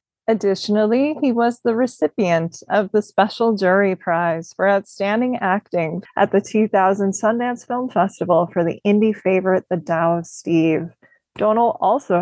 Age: 20-39